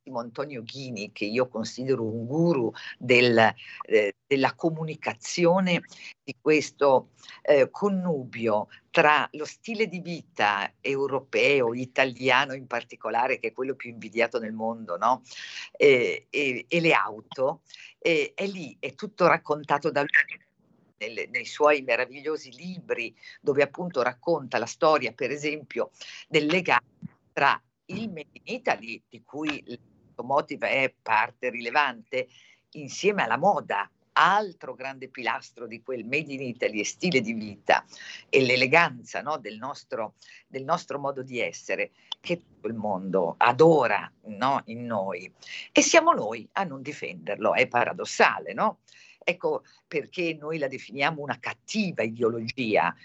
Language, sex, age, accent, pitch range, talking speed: Italian, female, 50-69, native, 120-175 Hz, 135 wpm